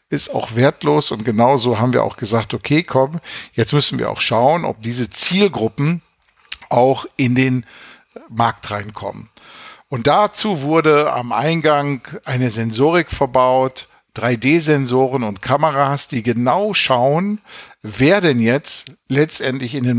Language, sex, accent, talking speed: German, male, German, 130 wpm